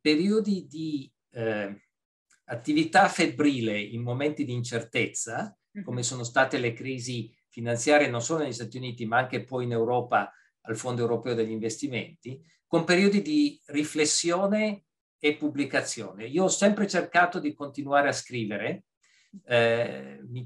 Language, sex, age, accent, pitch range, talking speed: Italian, male, 50-69, native, 125-175 Hz, 135 wpm